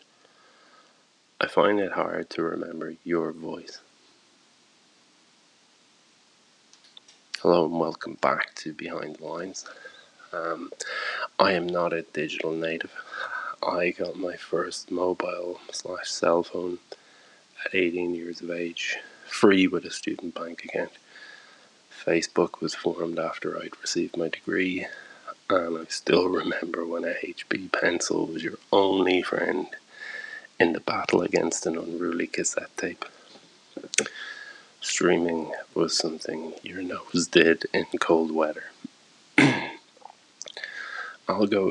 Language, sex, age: English, male, 20-39